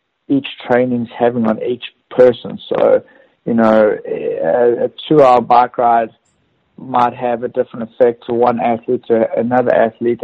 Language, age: English, 60-79